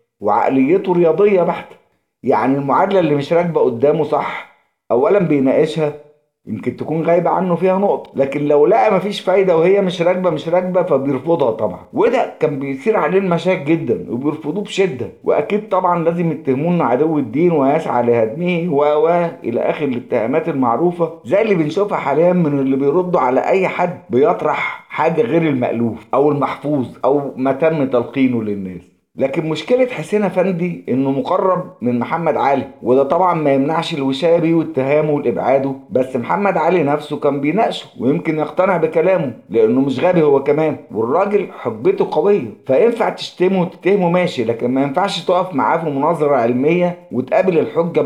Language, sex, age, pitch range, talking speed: Arabic, male, 50-69, 135-180 Hz, 150 wpm